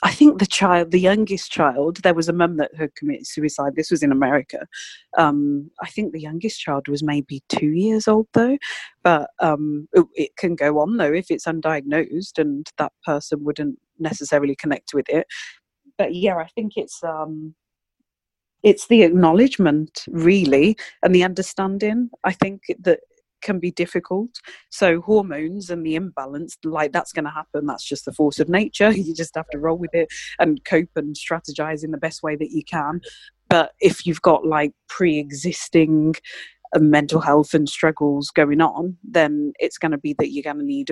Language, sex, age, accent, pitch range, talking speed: English, female, 30-49, British, 150-175 Hz, 180 wpm